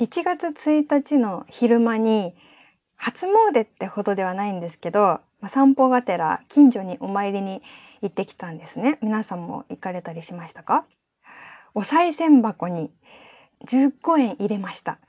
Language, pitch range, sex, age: Japanese, 185-260 Hz, female, 20-39